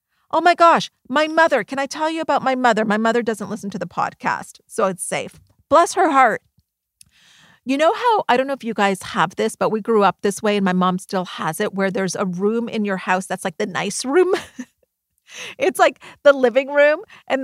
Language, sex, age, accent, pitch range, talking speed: English, female, 40-59, American, 205-290 Hz, 225 wpm